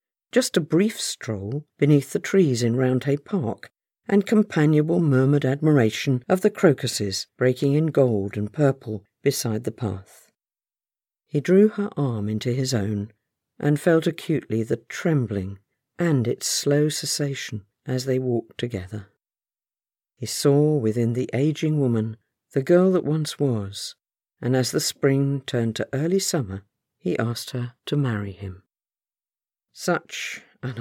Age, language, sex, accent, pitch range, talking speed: 50-69, English, female, British, 115-155 Hz, 140 wpm